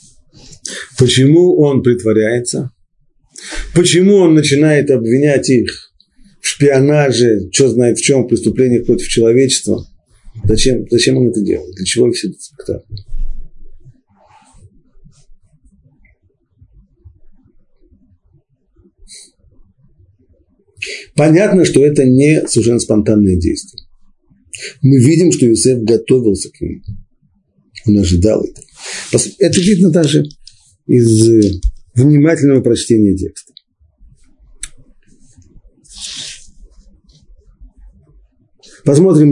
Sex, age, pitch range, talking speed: male, 40-59, 100-140 Hz, 80 wpm